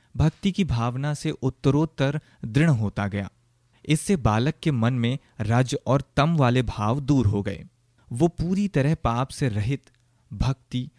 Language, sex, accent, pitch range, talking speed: Hindi, male, native, 115-145 Hz, 155 wpm